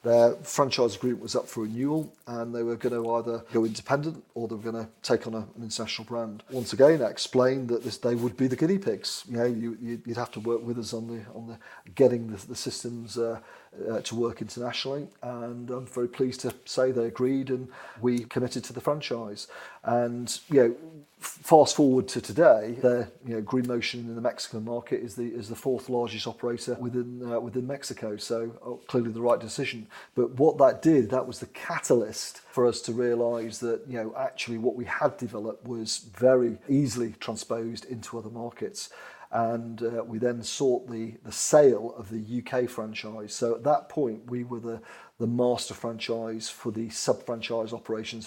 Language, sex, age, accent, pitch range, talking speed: English, male, 40-59, British, 115-125 Hz, 200 wpm